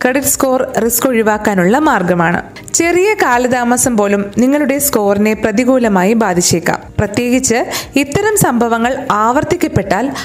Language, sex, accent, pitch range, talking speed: Malayalam, female, native, 205-275 Hz, 75 wpm